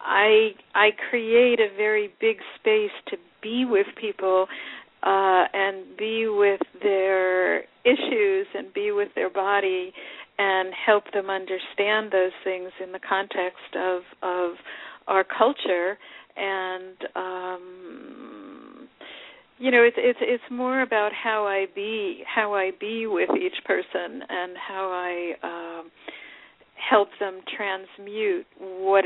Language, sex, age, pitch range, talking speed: English, female, 50-69, 185-235 Hz, 125 wpm